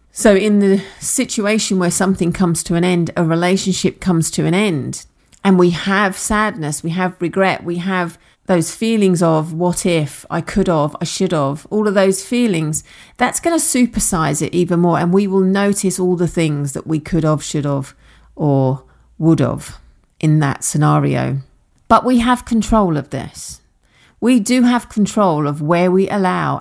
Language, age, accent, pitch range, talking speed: English, 40-59, British, 145-195 Hz, 180 wpm